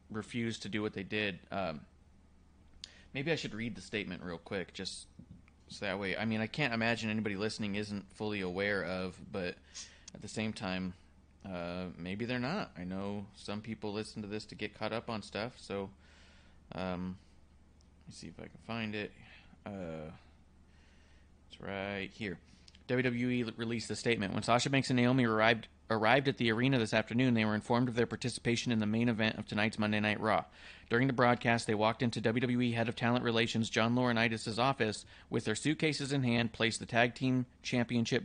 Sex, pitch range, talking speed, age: male, 95-120 Hz, 190 wpm, 20-39